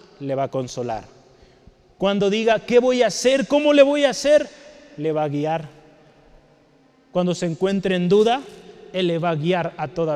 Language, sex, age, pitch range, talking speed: Spanish, male, 30-49, 165-230 Hz, 185 wpm